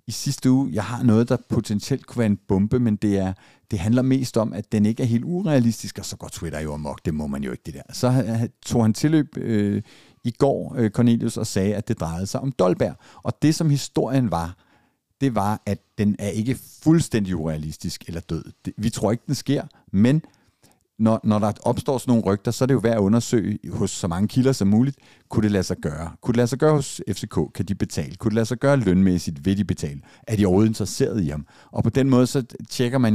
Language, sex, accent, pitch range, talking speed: Danish, male, native, 95-130 Hz, 235 wpm